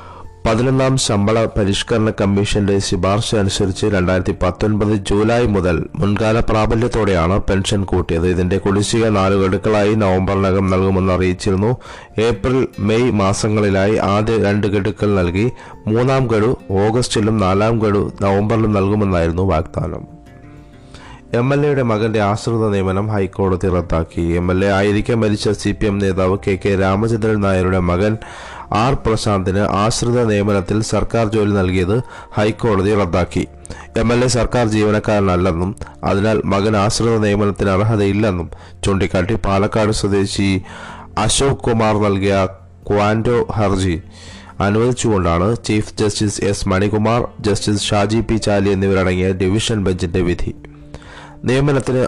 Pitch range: 95-110 Hz